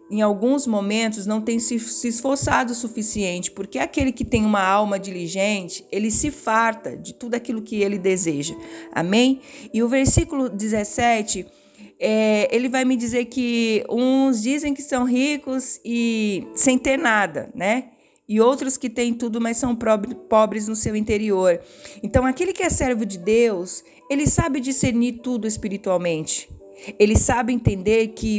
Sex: female